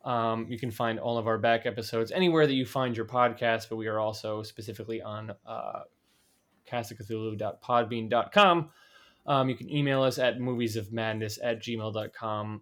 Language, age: English, 20-39